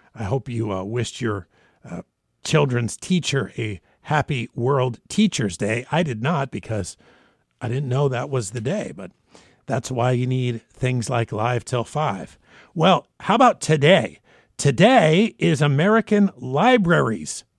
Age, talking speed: 50-69, 145 wpm